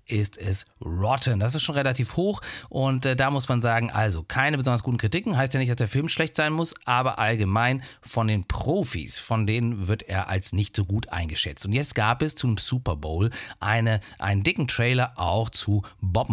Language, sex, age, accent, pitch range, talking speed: German, male, 40-59, German, 110-135 Hz, 205 wpm